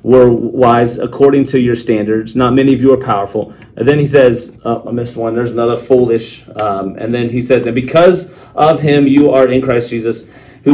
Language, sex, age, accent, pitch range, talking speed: English, male, 30-49, American, 115-140 Hz, 210 wpm